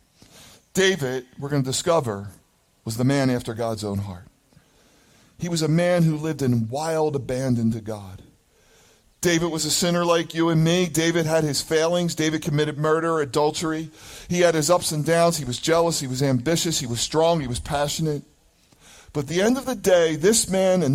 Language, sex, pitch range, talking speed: English, male, 125-170 Hz, 190 wpm